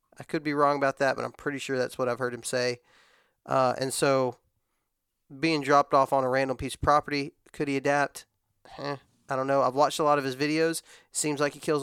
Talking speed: 240 wpm